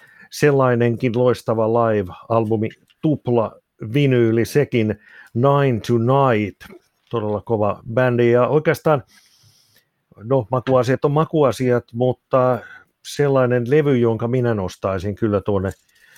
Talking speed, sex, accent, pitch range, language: 95 wpm, male, native, 105-130 Hz, Finnish